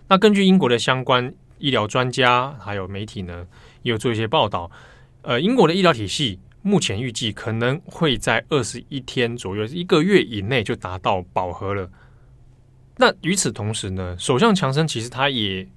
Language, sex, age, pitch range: Chinese, male, 20-39, 105-135 Hz